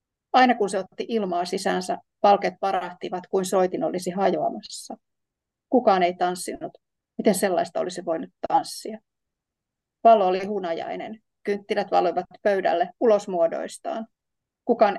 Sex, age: female, 30-49